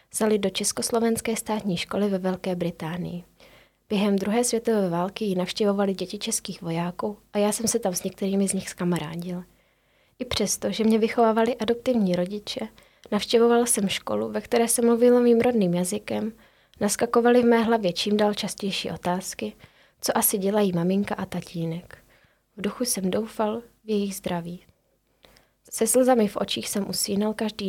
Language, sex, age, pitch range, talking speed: Czech, female, 20-39, 185-220 Hz, 155 wpm